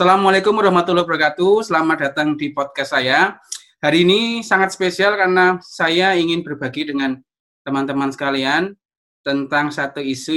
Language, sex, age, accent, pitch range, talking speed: Indonesian, male, 20-39, native, 135-185 Hz, 125 wpm